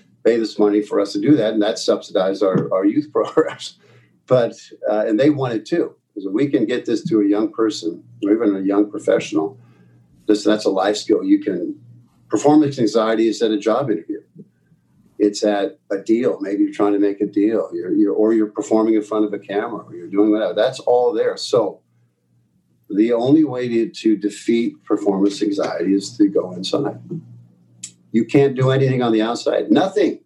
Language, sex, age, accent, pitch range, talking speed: English, male, 50-69, American, 105-160 Hz, 200 wpm